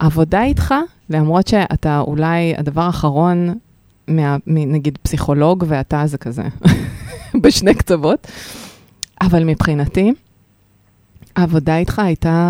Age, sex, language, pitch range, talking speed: 20-39, female, Hebrew, 150-195 Hz, 90 wpm